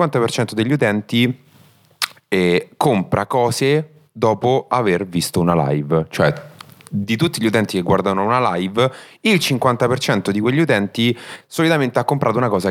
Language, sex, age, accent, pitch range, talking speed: Italian, male, 30-49, native, 95-145 Hz, 140 wpm